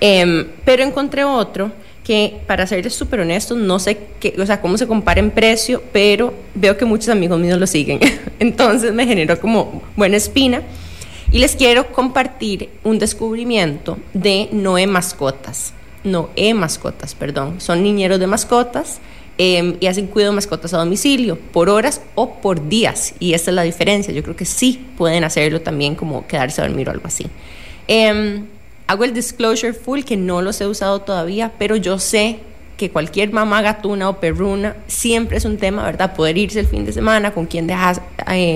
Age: 20-39